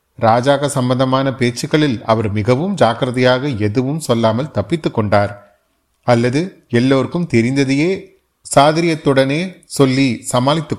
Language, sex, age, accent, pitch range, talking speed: Tamil, male, 30-49, native, 115-145 Hz, 90 wpm